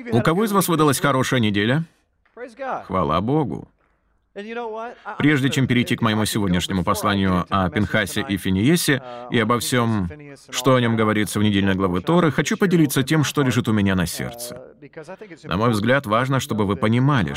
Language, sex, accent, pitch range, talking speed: Russian, male, native, 110-160 Hz, 160 wpm